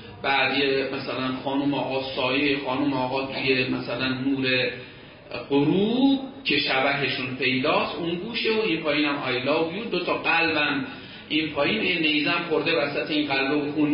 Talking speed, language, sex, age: 140 wpm, Persian, male, 40-59